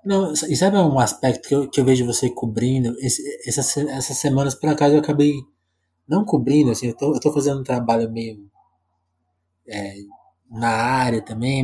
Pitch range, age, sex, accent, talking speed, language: 110-140 Hz, 20-39, male, Brazilian, 170 wpm, Portuguese